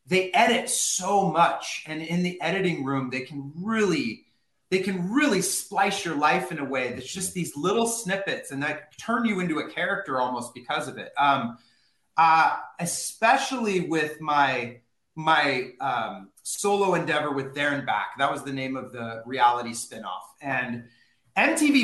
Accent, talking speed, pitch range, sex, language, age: American, 165 wpm, 140-185 Hz, male, English, 30-49